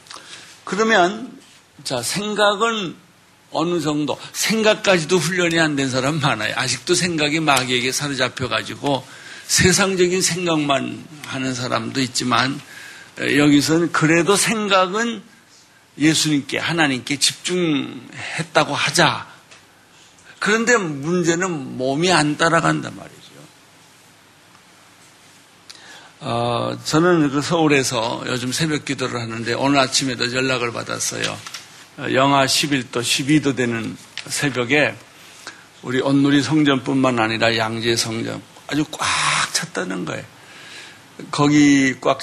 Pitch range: 125-165 Hz